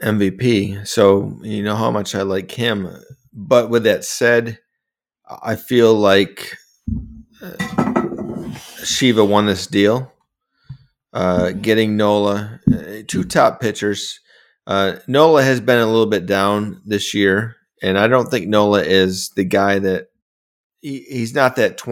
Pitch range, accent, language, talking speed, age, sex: 100-120 Hz, American, English, 135 wpm, 30-49, male